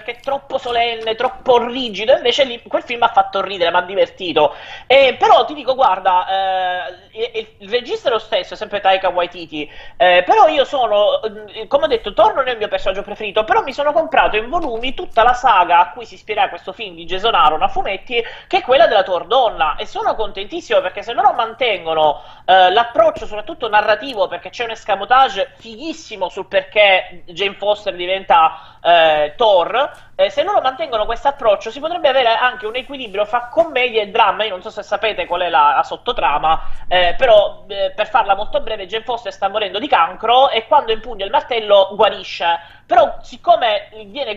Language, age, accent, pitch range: Italian, 30-49, native, 195-275 Hz